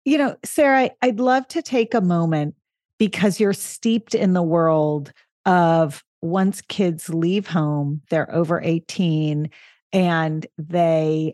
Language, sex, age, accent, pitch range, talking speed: English, female, 40-59, American, 165-210 Hz, 130 wpm